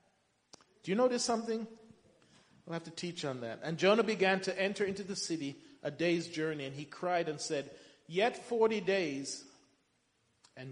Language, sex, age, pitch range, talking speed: English, male, 40-59, 160-215 Hz, 170 wpm